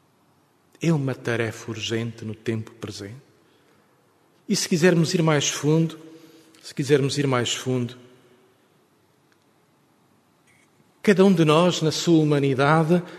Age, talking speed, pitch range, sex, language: 40-59, 115 wpm, 125-165 Hz, male, Portuguese